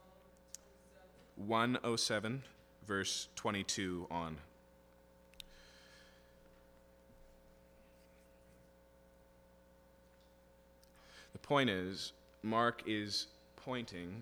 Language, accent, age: English, American, 30-49